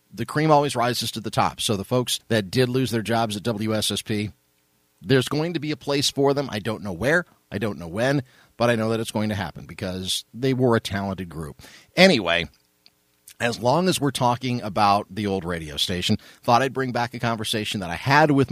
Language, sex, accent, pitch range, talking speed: English, male, American, 95-125 Hz, 220 wpm